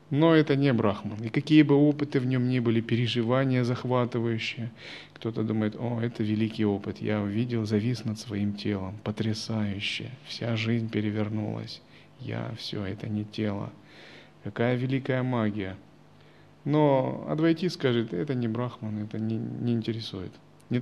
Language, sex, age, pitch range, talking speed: Russian, male, 30-49, 110-135 Hz, 140 wpm